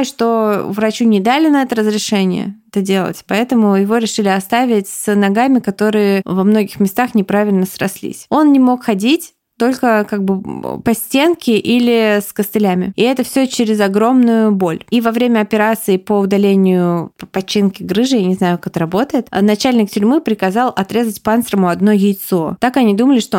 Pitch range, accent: 195-235 Hz, native